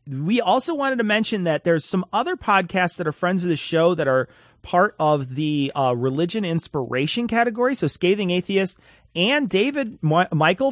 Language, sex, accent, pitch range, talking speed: English, male, American, 140-200 Hz, 175 wpm